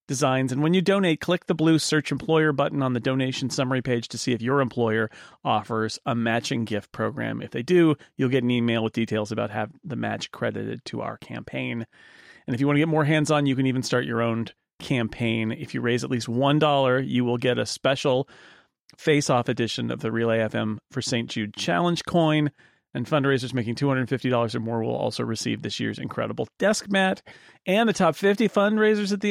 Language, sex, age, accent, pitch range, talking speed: English, male, 40-59, American, 120-155 Hz, 210 wpm